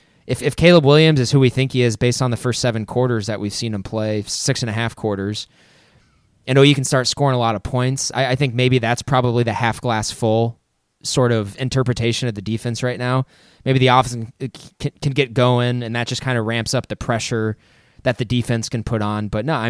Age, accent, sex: 20-39, American, male